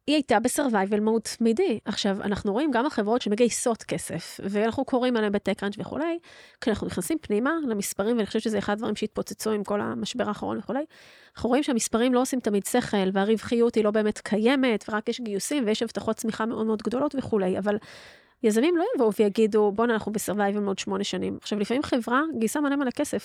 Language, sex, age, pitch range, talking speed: Hebrew, female, 30-49, 210-270 Hz, 190 wpm